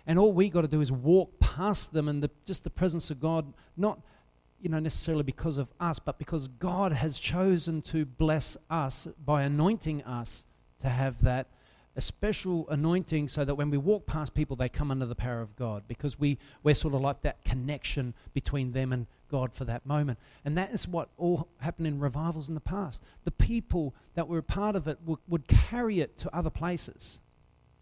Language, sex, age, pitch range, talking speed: English, male, 40-59, 135-175 Hz, 205 wpm